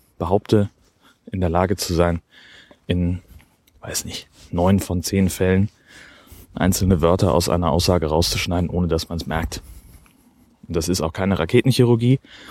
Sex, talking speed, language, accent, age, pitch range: male, 145 wpm, German, German, 30-49, 90-110 Hz